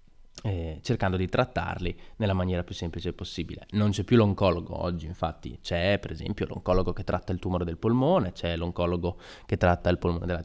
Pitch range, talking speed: 90-105 Hz, 180 wpm